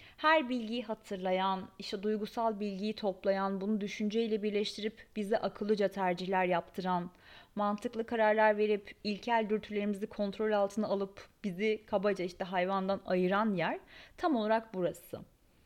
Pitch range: 195-255 Hz